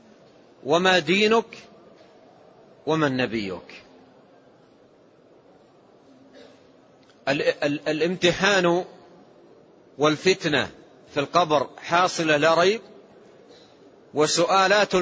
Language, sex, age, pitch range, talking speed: Arabic, male, 40-59, 150-190 Hz, 50 wpm